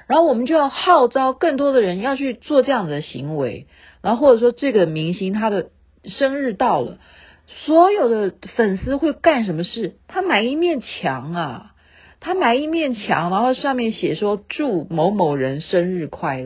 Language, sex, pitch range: Chinese, female, 165-275 Hz